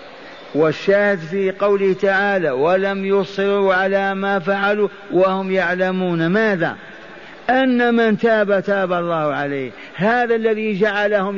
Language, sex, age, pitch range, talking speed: Arabic, male, 50-69, 180-205 Hz, 110 wpm